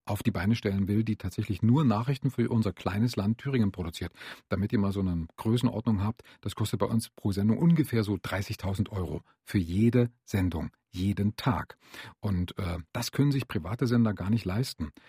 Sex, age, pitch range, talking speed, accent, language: male, 40-59, 95-125 Hz, 185 wpm, German, German